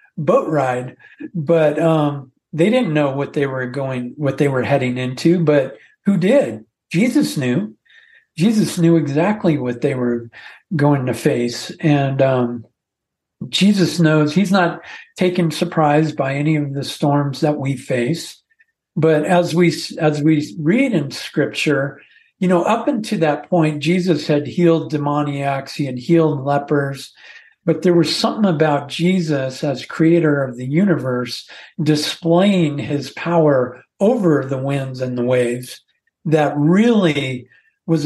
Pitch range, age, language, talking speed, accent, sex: 135-175 Hz, 50-69, English, 145 wpm, American, male